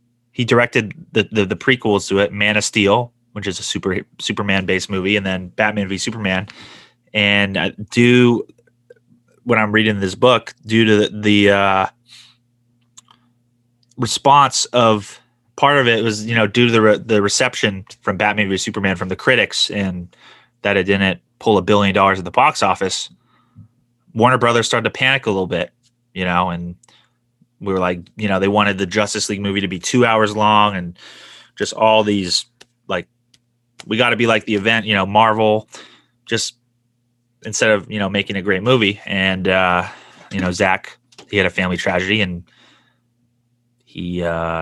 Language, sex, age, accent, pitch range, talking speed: English, male, 20-39, American, 100-120 Hz, 180 wpm